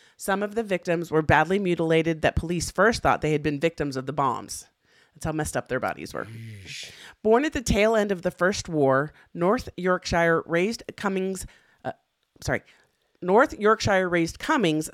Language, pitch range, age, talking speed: English, 145-195 Hz, 40-59, 175 wpm